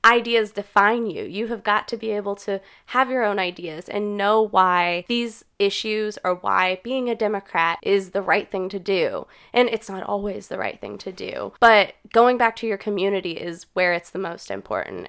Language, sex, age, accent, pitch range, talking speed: English, female, 10-29, American, 175-215 Hz, 205 wpm